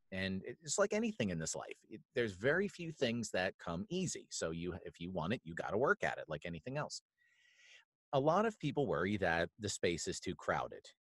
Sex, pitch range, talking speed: male, 95-140 Hz, 220 wpm